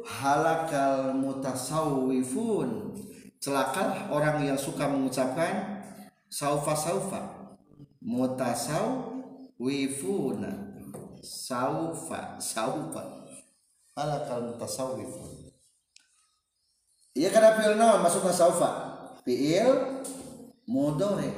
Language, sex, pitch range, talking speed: Indonesian, male, 135-175 Hz, 60 wpm